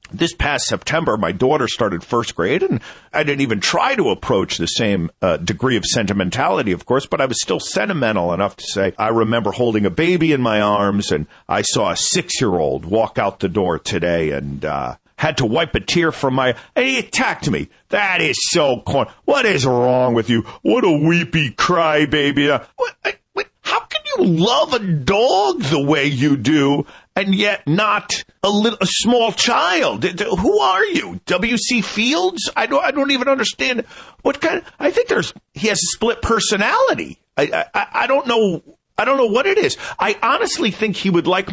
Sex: male